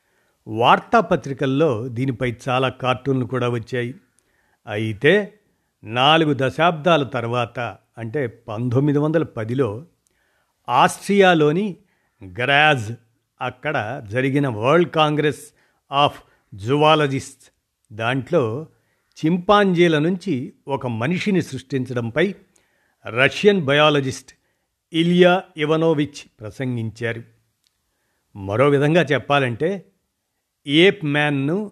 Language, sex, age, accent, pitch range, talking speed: Telugu, male, 50-69, native, 120-165 Hz, 70 wpm